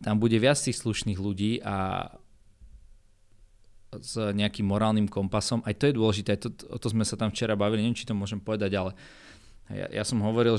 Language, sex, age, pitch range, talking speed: Slovak, male, 20-39, 100-115 Hz, 185 wpm